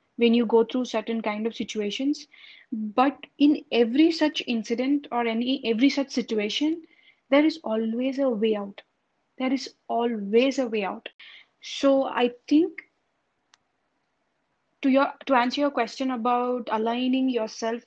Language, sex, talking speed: English, female, 140 wpm